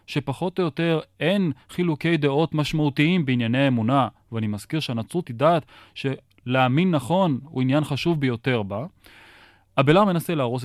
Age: 20-39